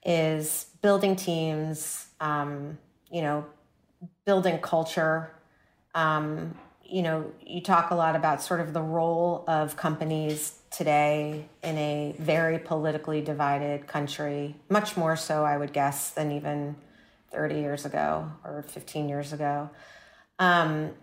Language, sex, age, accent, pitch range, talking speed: English, female, 30-49, American, 150-175 Hz, 130 wpm